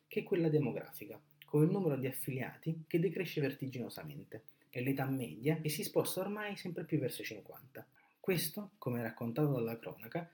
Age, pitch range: 30-49, 120-160 Hz